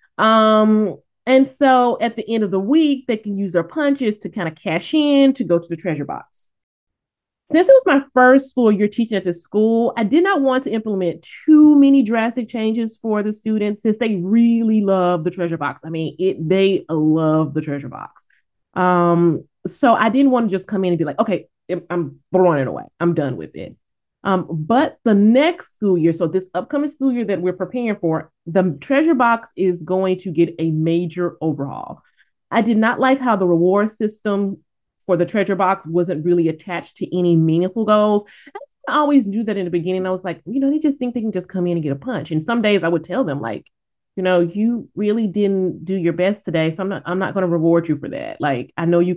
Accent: American